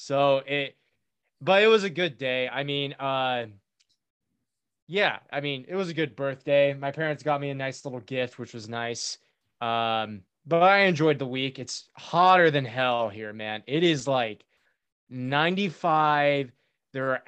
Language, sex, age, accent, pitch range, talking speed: English, male, 20-39, American, 130-160 Hz, 165 wpm